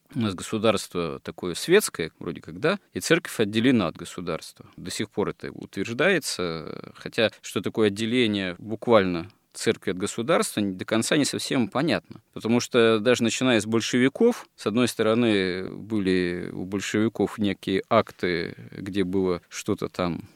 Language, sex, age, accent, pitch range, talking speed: Russian, male, 20-39, native, 95-110 Hz, 145 wpm